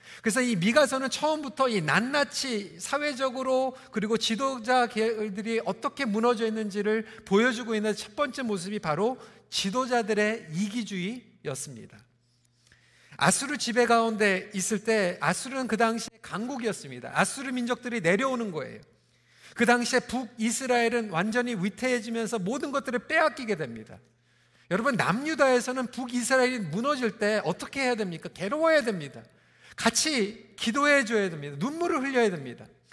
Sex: male